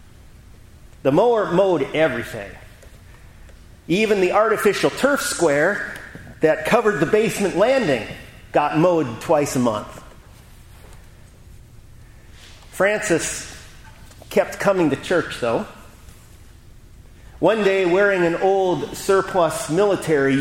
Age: 40-59